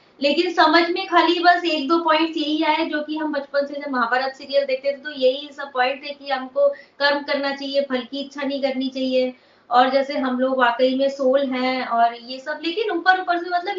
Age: 20-39